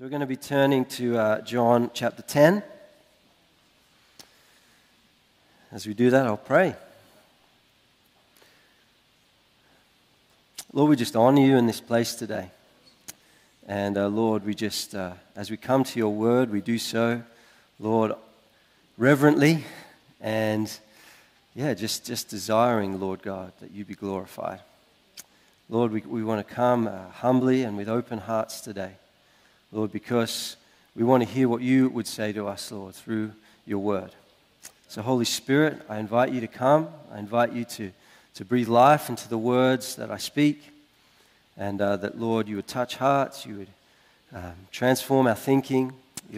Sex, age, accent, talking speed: male, 40-59, Australian, 155 wpm